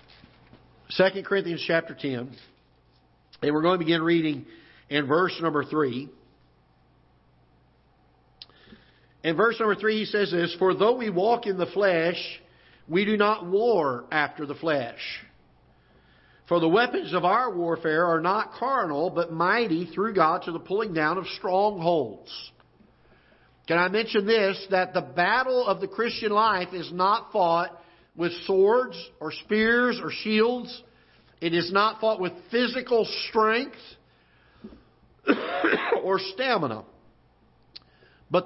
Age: 50-69